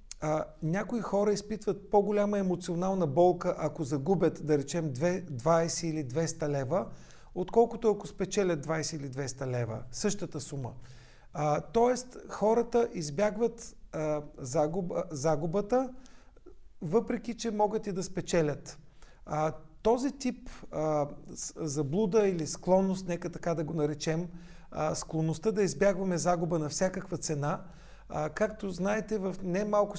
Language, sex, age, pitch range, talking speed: Bulgarian, male, 40-59, 160-200 Hz, 120 wpm